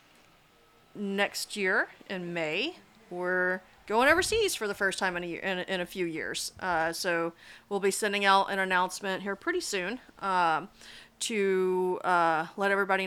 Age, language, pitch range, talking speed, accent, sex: 30-49, English, 170-200 Hz, 160 wpm, American, female